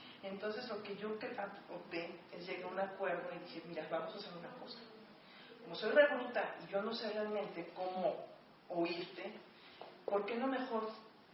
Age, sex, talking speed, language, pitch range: 40-59, female, 175 wpm, Spanish, 185-225 Hz